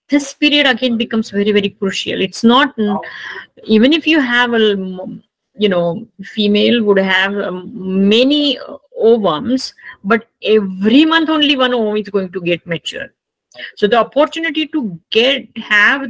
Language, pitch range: English, 200-255 Hz